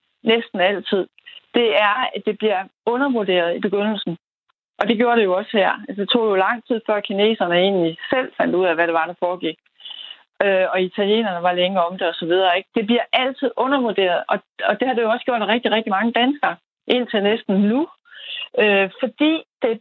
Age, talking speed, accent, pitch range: 40-59, 195 wpm, native, 195-265 Hz